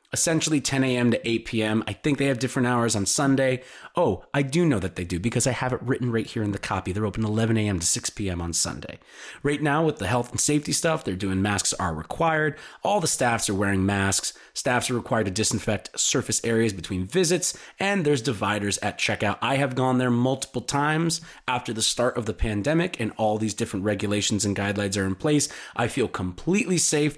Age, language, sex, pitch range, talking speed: 30-49, English, male, 105-145 Hz, 220 wpm